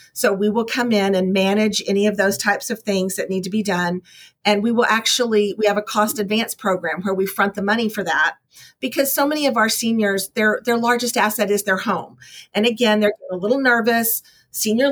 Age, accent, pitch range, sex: 50-69, American, 190-225 Hz, female